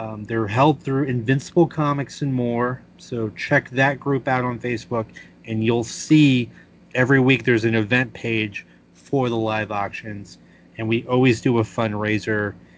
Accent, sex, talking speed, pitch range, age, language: American, male, 160 wpm, 110-140 Hz, 30-49, English